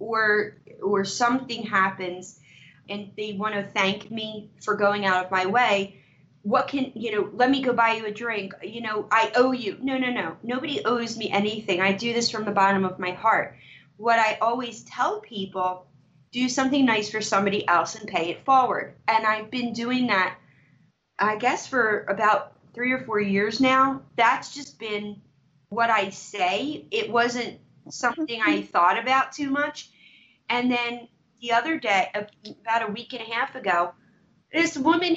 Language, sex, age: English, female, 30-49